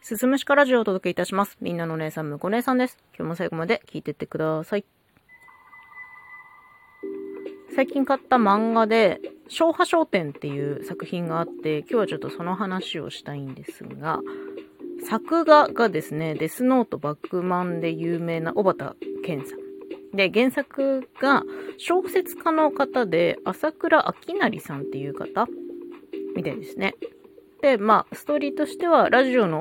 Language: Japanese